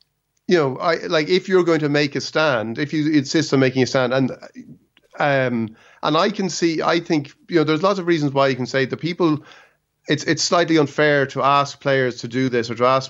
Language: English